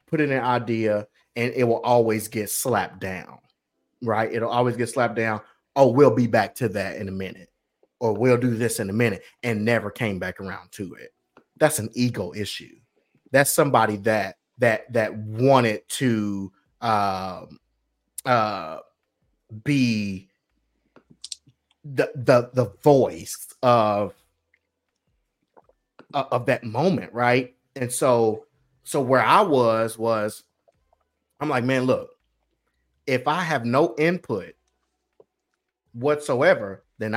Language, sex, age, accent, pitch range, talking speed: English, male, 30-49, American, 110-130 Hz, 130 wpm